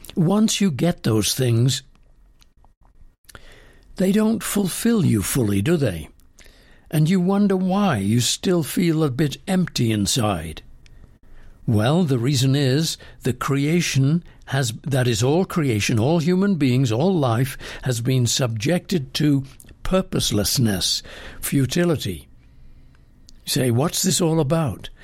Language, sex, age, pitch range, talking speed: English, male, 60-79, 120-165 Hz, 120 wpm